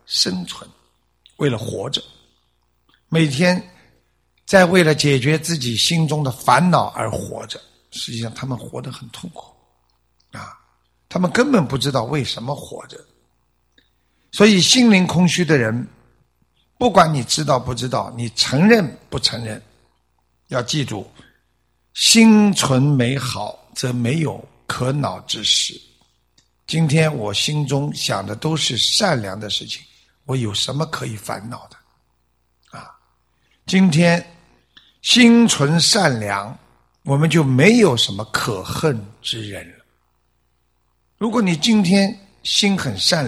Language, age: Chinese, 60-79